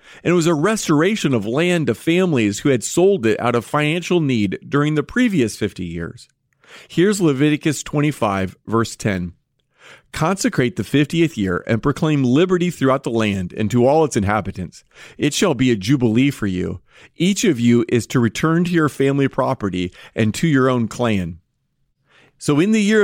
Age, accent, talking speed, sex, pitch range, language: 40-59, American, 175 wpm, male, 110-155 Hz, English